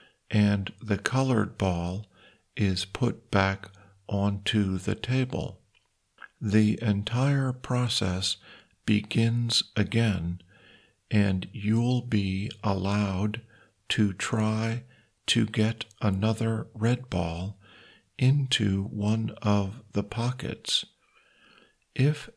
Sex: male